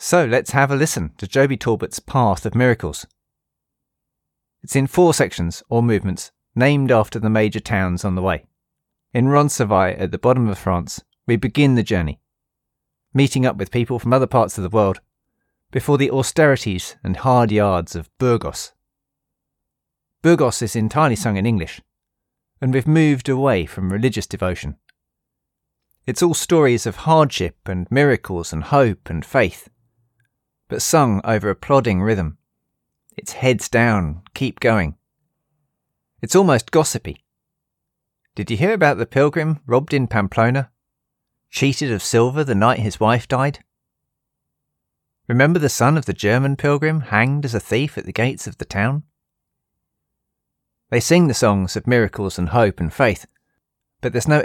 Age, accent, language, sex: 40-59, British, English, male